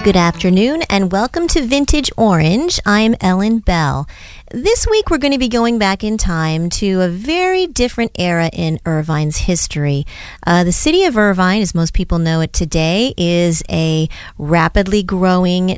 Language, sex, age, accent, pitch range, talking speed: English, female, 30-49, American, 170-230 Hz, 165 wpm